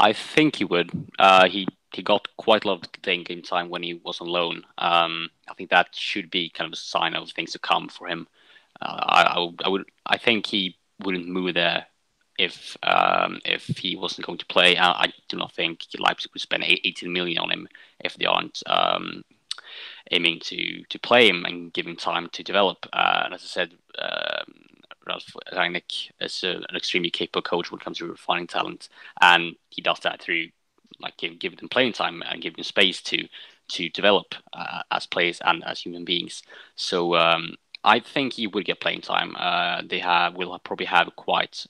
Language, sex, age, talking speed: English, male, 20-39, 200 wpm